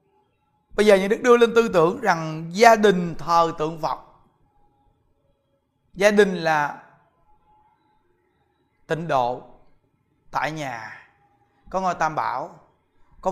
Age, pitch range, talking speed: 20-39, 155-210 Hz, 115 wpm